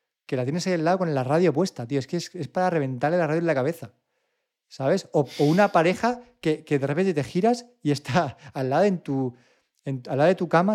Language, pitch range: Spanish, 130-170 Hz